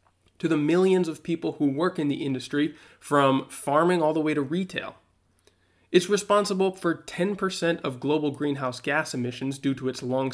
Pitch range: 135-175 Hz